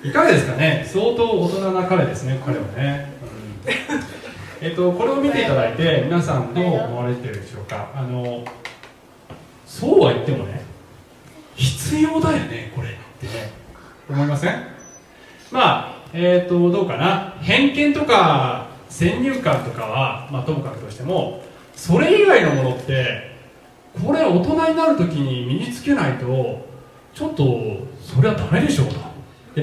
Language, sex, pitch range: Japanese, male, 130-180 Hz